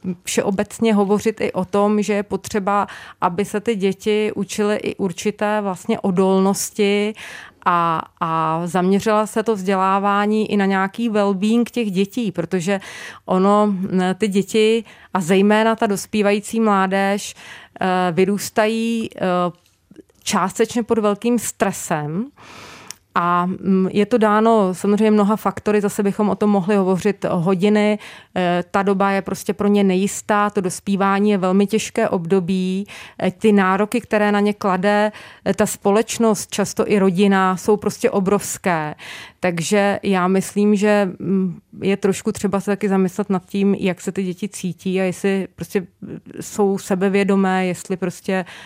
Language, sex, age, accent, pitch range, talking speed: Czech, female, 30-49, native, 185-210 Hz, 135 wpm